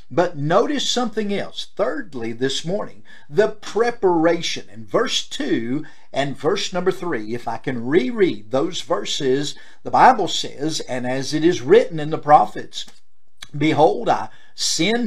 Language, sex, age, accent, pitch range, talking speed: English, male, 50-69, American, 135-195 Hz, 145 wpm